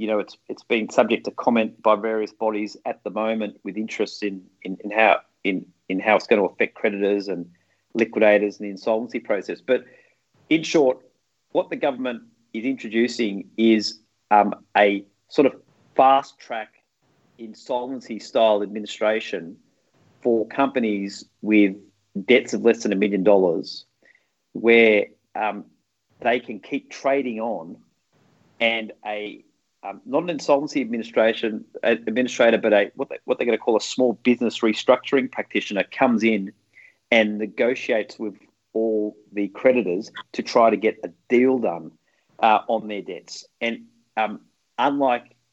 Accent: Australian